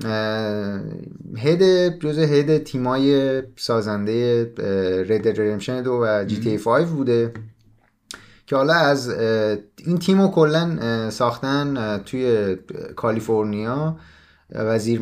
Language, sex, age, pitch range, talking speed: Persian, male, 30-49, 105-140 Hz, 80 wpm